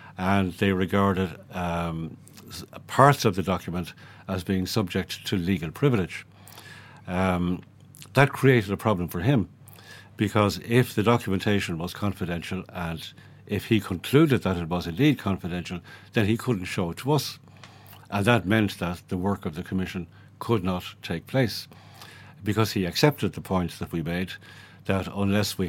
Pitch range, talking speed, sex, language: 90-110 Hz, 155 wpm, male, English